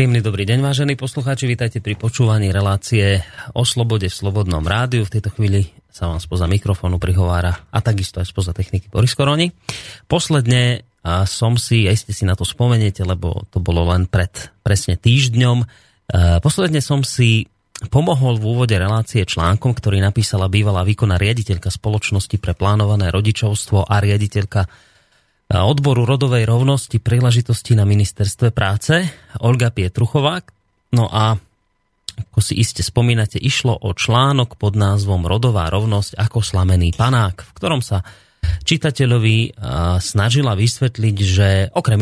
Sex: male